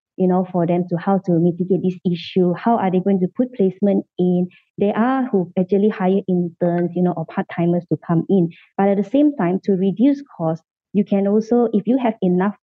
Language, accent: English, Malaysian